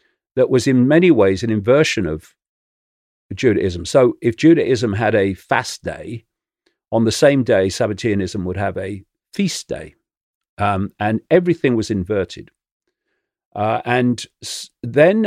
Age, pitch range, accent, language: 40-59, 95-125 Hz, British, English